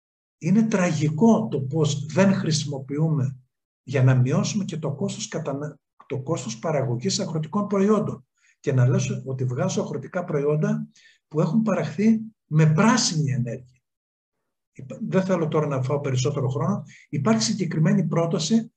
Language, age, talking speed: Greek, 50-69, 130 wpm